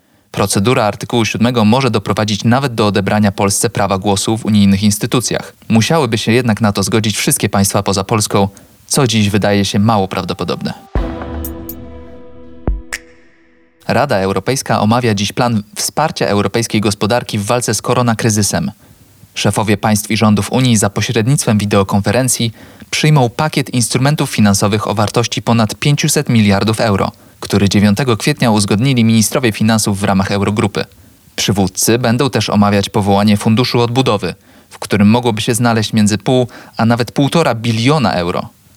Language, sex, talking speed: Polish, male, 135 wpm